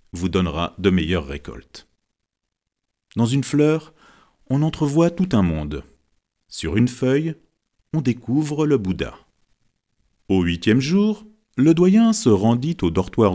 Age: 40-59